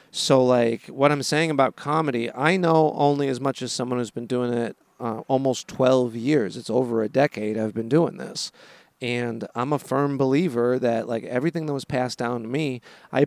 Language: English